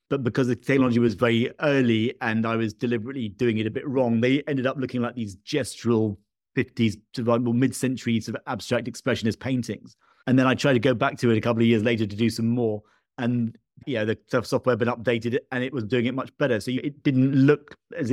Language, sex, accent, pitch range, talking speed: English, male, British, 110-130 Hz, 225 wpm